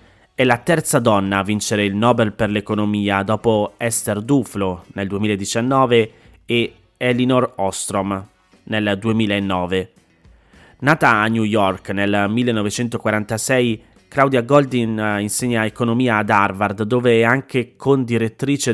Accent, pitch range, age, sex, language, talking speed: native, 100-125 Hz, 30-49, male, Italian, 115 wpm